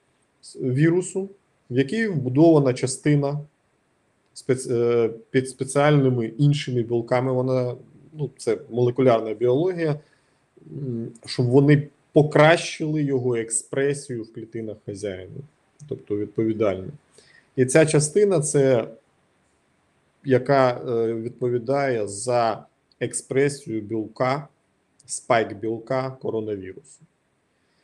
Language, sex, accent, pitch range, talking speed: Ukrainian, male, native, 120-145 Hz, 80 wpm